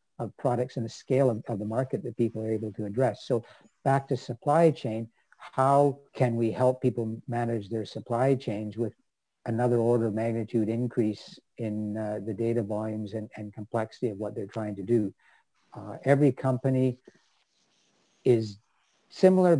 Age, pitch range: 50-69, 110-130 Hz